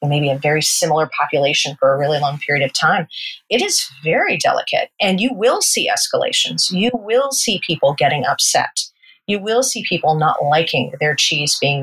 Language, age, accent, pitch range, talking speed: English, 40-59, American, 160-240 Hz, 185 wpm